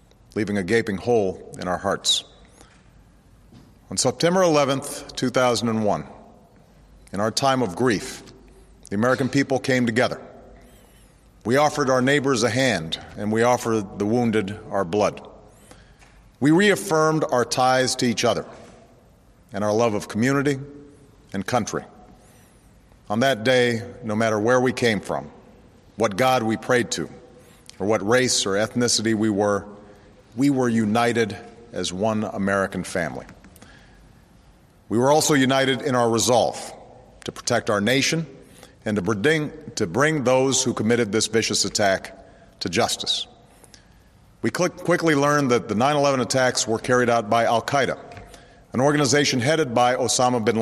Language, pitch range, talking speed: Persian, 110-135 Hz, 140 wpm